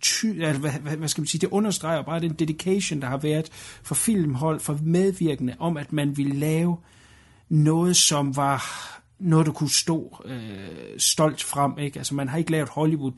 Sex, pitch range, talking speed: male, 135-165 Hz, 175 wpm